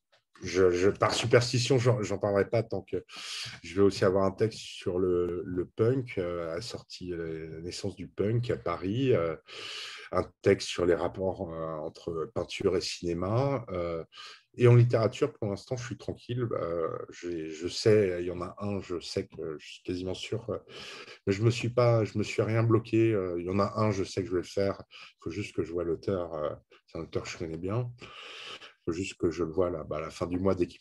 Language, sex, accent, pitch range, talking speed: French, male, French, 90-115 Hz, 235 wpm